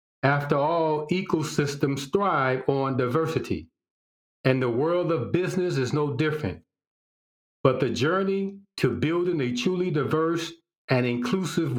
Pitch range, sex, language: 125-175 Hz, male, English